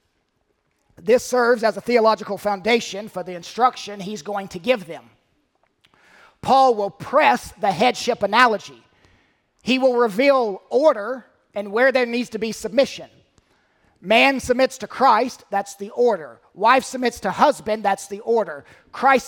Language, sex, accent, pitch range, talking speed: English, male, American, 205-270 Hz, 145 wpm